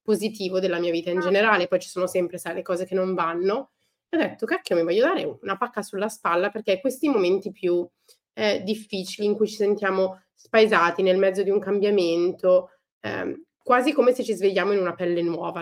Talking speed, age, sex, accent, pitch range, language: 200 wpm, 20-39, female, native, 180-225 Hz, Italian